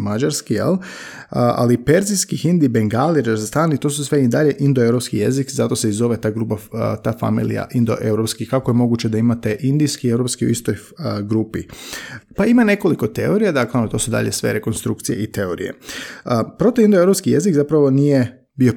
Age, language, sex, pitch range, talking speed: 30-49, Croatian, male, 115-165 Hz, 175 wpm